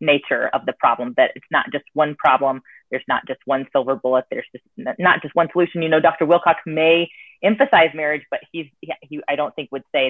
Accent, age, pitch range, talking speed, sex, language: American, 30-49, 145-195 Hz, 220 wpm, female, English